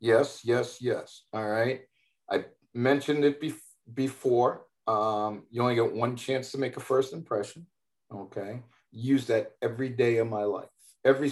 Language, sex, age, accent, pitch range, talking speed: English, male, 50-69, American, 110-130 Hz, 155 wpm